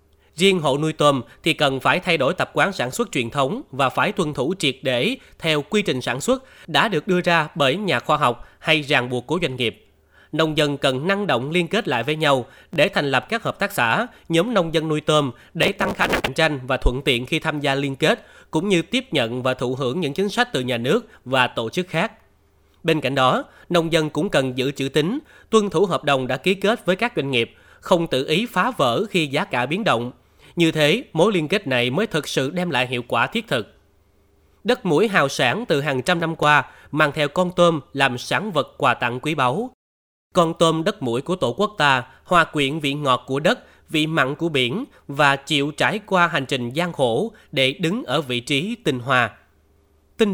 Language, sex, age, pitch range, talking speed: Vietnamese, male, 20-39, 130-175 Hz, 230 wpm